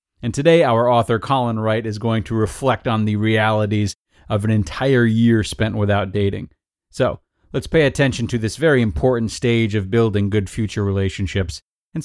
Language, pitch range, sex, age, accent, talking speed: English, 100-125 Hz, male, 30-49, American, 175 wpm